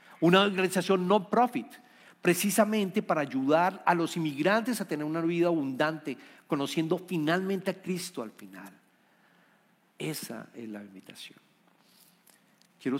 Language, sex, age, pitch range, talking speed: Italian, male, 50-69, 120-180 Hz, 120 wpm